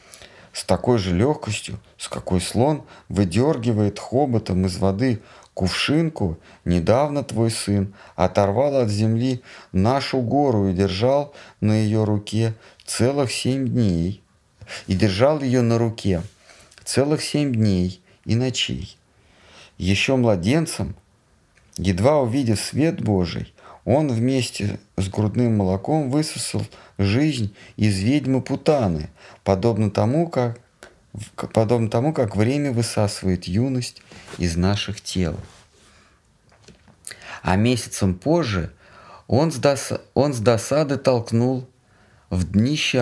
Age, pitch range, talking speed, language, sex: 50-69, 95-130 Hz, 105 wpm, Russian, male